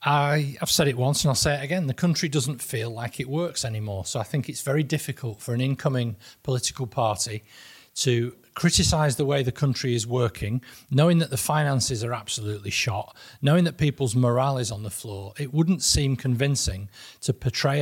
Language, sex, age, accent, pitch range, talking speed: English, male, 40-59, British, 110-140 Hz, 190 wpm